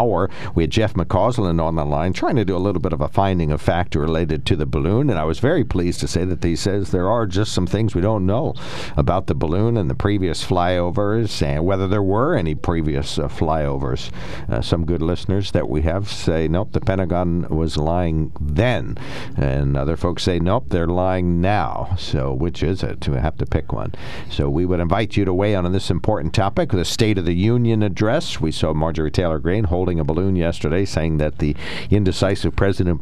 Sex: male